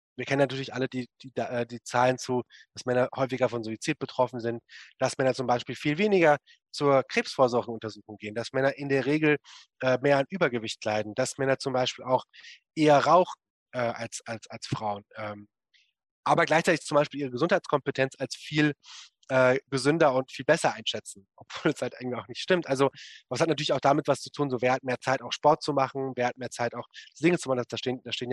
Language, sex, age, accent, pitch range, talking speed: German, male, 20-39, German, 125-150 Hz, 210 wpm